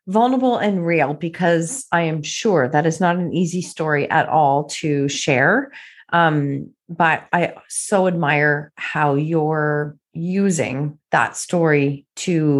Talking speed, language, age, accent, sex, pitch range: 135 wpm, English, 40-59, American, female, 155-215 Hz